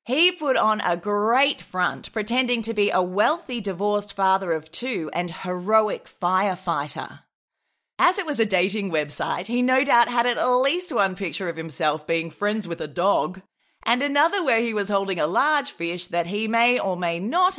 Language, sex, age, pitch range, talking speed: English, female, 20-39, 175-245 Hz, 185 wpm